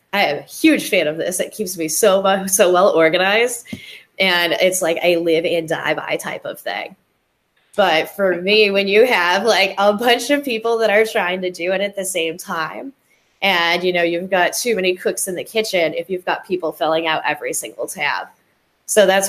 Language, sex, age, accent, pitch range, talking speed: English, female, 10-29, American, 170-220 Hz, 215 wpm